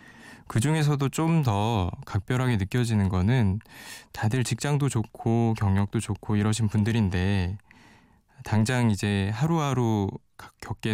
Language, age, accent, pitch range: Korean, 20-39, native, 95-120 Hz